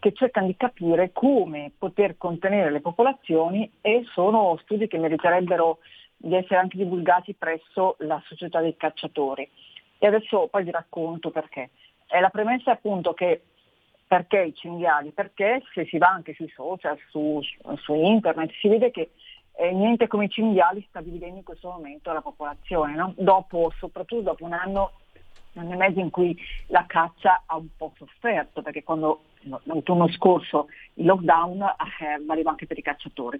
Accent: native